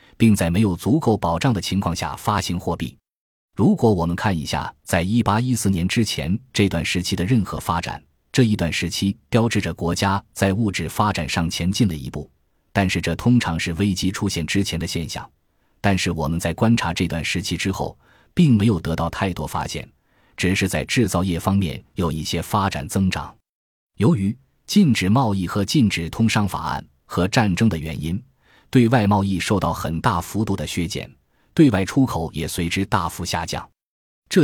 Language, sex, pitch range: Chinese, male, 85-110 Hz